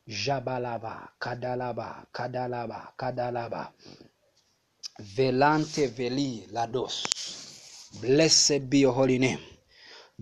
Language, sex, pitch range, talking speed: English, male, 125-155 Hz, 65 wpm